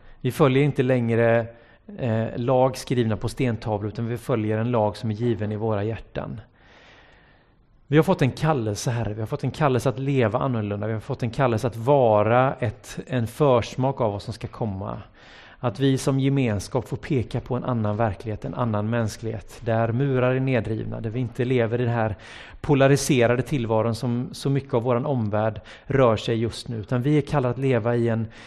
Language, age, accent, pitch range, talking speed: Swedish, 30-49, native, 110-135 Hz, 190 wpm